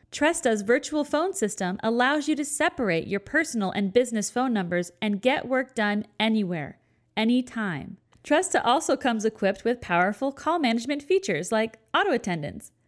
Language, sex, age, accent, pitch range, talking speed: English, female, 40-59, American, 205-290 Hz, 150 wpm